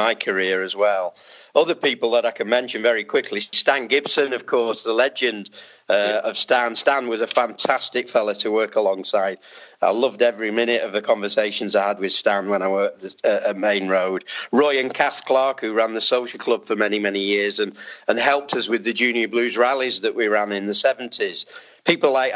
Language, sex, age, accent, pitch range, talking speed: English, male, 40-59, British, 105-125 Hz, 205 wpm